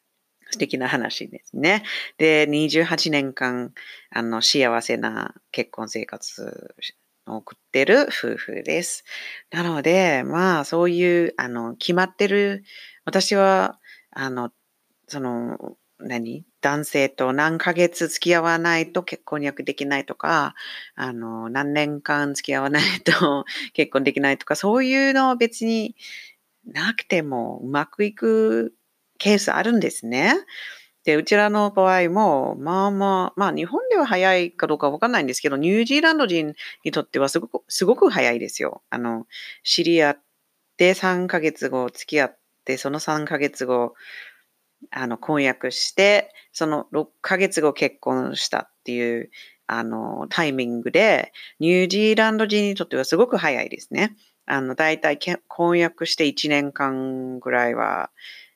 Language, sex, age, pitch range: English, female, 40-59, 140-190 Hz